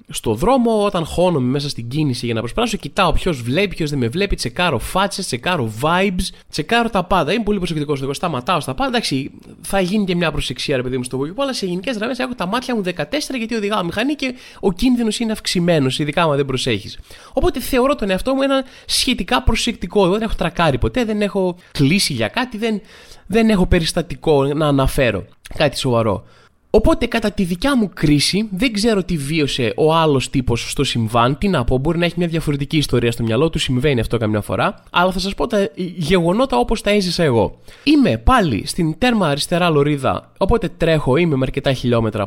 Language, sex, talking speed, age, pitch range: Greek, male, 200 wpm, 20-39, 140-215 Hz